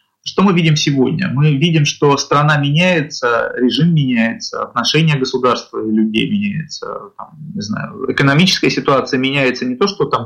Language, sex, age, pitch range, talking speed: English, male, 20-39, 120-170 Hz, 145 wpm